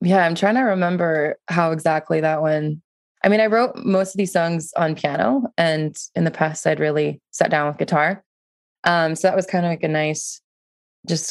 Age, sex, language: 20-39, female, English